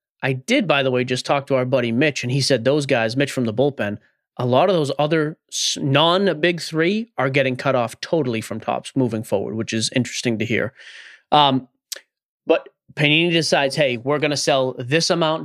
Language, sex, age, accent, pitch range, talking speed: English, male, 30-49, American, 130-165 Hz, 200 wpm